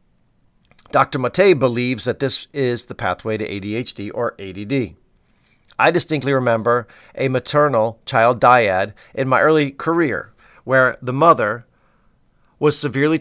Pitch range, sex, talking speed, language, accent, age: 110-135 Hz, male, 125 wpm, English, American, 50-69